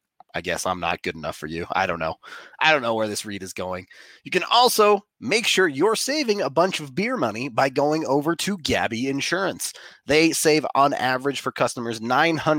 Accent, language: American, English